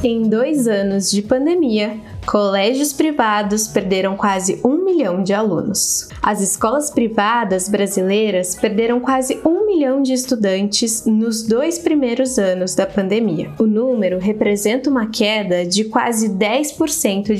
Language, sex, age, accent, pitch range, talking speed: Portuguese, female, 10-29, Brazilian, 210-290 Hz, 130 wpm